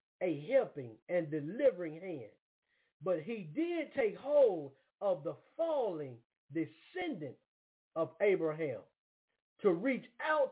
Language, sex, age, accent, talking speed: English, male, 50-69, American, 110 wpm